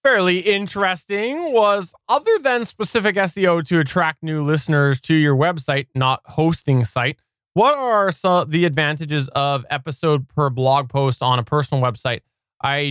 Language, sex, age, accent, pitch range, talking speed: English, male, 20-39, American, 125-155 Hz, 145 wpm